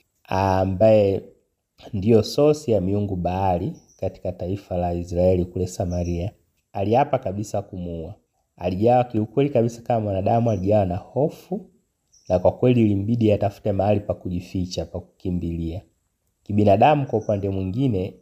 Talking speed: 130 wpm